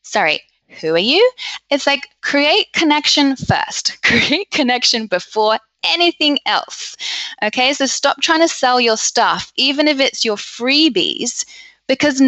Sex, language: female, English